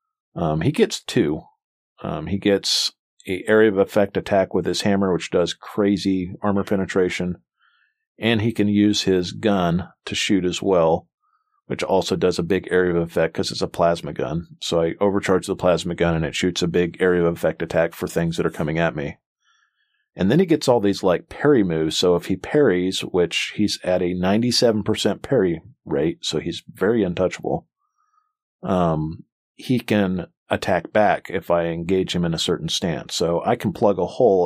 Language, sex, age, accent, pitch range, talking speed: English, male, 40-59, American, 90-110 Hz, 190 wpm